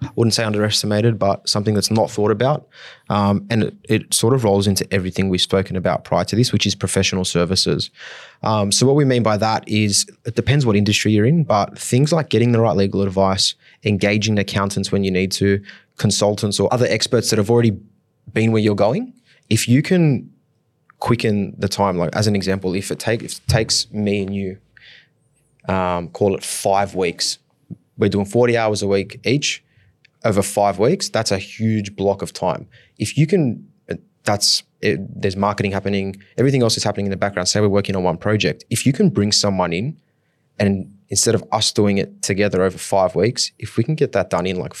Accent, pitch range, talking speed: Australian, 100-120 Hz, 200 wpm